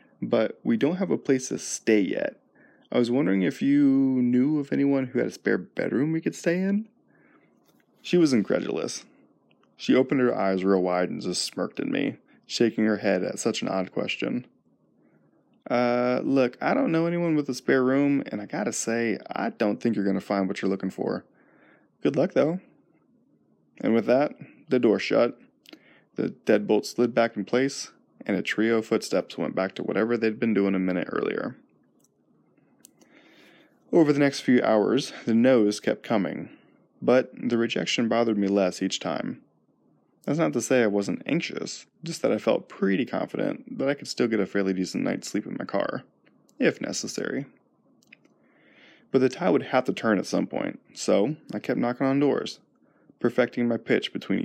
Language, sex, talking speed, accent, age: English, male, 185 wpm, American, 20-39